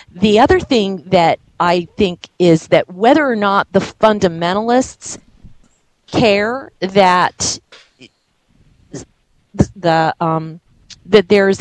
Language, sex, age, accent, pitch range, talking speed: English, female, 40-59, American, 170-215 Hz, 105 wpm